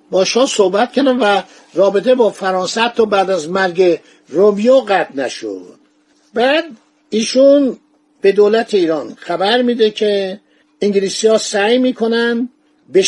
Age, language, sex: 50-69, Persian, male